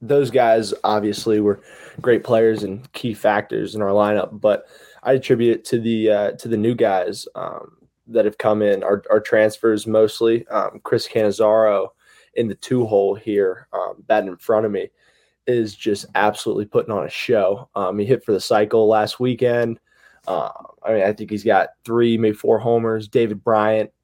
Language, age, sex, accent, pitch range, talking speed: English, 20-39, male, American, 105-125 Hz, 185 wpm